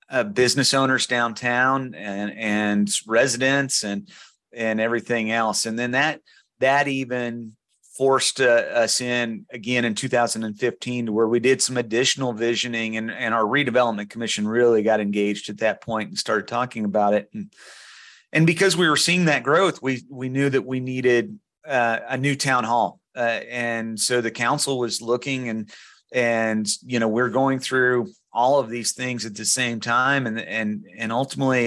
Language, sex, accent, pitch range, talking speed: English, male, American, 110-125 Hz, 170 wpm